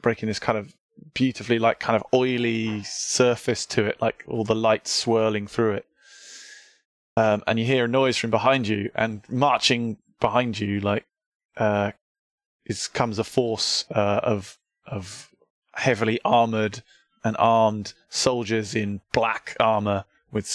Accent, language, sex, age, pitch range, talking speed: British, English, male, 20-39, 105-125 Hz, 145 wpm